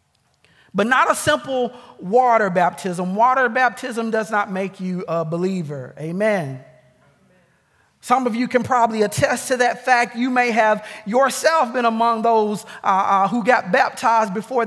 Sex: male